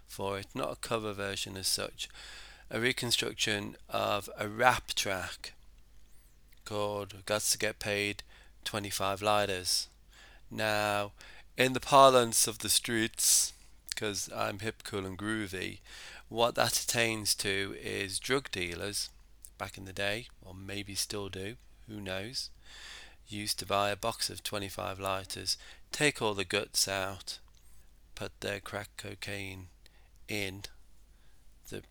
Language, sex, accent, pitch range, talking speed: English, male, British, 95-110 Hz, 130 wpm